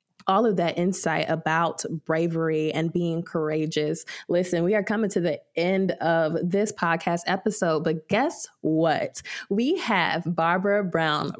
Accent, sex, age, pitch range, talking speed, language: American, female, 20-39, 170-200 Hz, 140 wpm, English